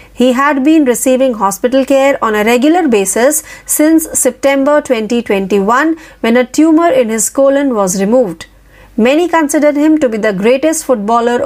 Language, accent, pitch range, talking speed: Marathi, native, 230-280 Hz, 150 wpm